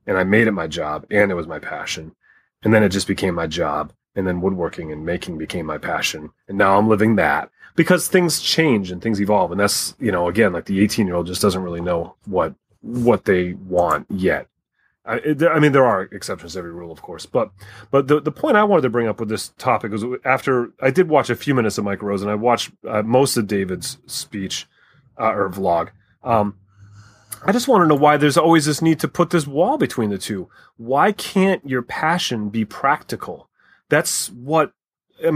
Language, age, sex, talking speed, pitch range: English, 30-49, male, 220 wpm, 105-150 Hz